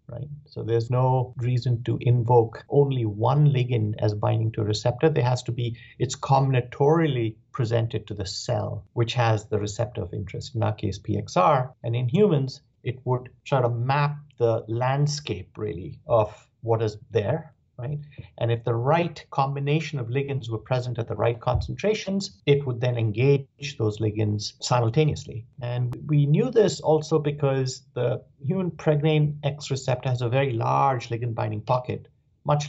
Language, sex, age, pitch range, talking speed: English, male, 50-69, 115-140 Hz, 165 wpm